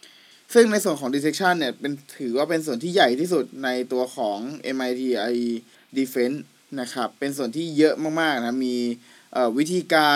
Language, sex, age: Thai, male, 20-39